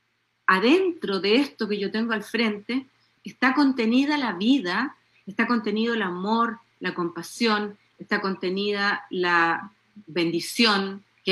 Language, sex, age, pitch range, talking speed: Spanish, female, 40-59, 185-265 Hz, 120 wpm